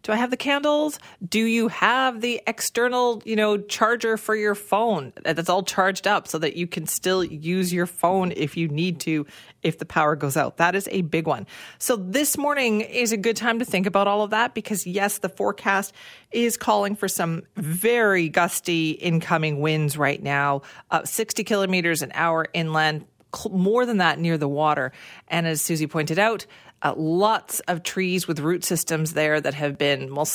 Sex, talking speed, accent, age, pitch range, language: female, 195 wpm, American, 40-59, 155-210 Hz, English